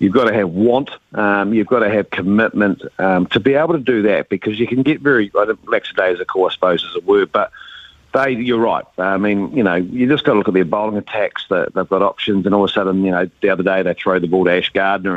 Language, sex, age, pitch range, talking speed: English, male, 40-59, 95-130 Hz, 275 wpm